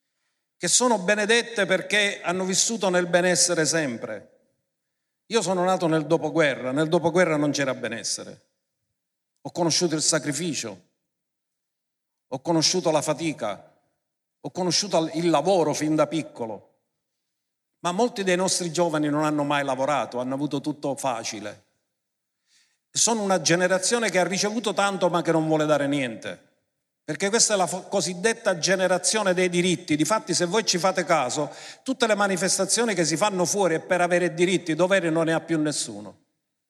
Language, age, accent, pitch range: Italian, 50-69, native, 150-185 Hz